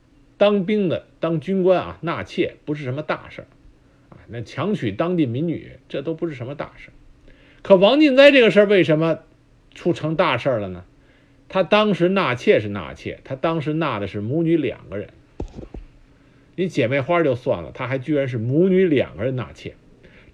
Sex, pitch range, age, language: male, 130-185 Hz, 50-69, Chinese